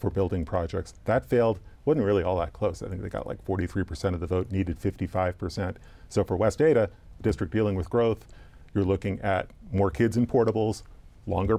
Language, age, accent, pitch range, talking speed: English, 40-59, American, 95-110 Hz, 190 wpm